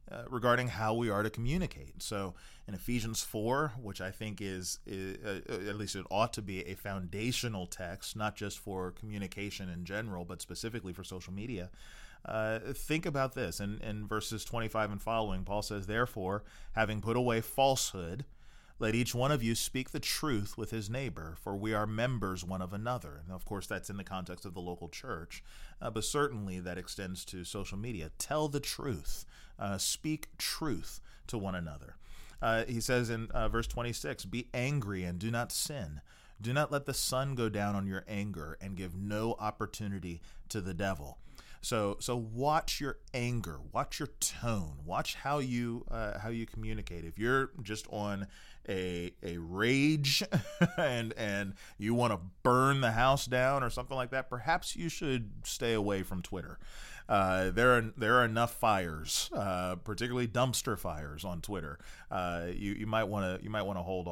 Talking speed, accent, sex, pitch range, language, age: 185 wpm, American, male, 95-120 Hz, English, 30-49